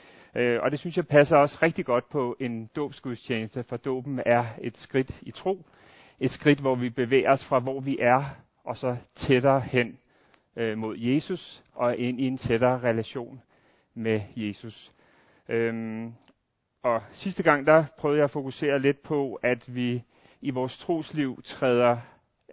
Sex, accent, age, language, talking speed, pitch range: male, native, 30-49, Danish, 155 wpm, 120-150 Hz